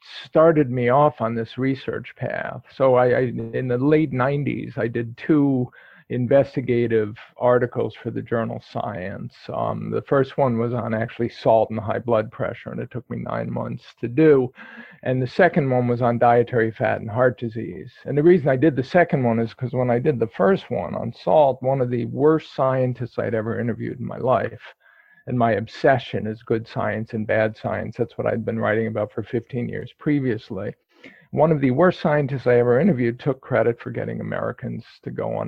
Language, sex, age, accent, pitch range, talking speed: English, male, 50-69, American, 115-135 Hz, 200 wpm